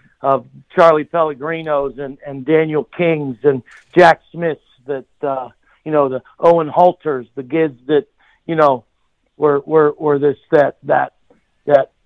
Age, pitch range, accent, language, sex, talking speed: 50-69, 140-165 Hz, American, English, male, 145 wpm